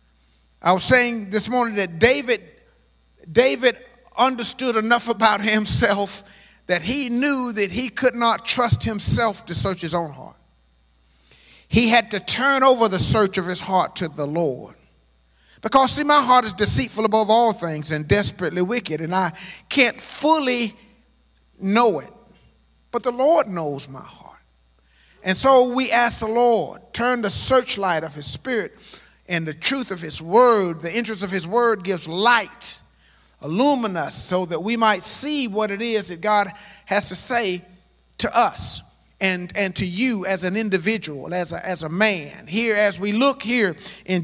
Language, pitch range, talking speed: English, 170-240 Hz, 165 wpm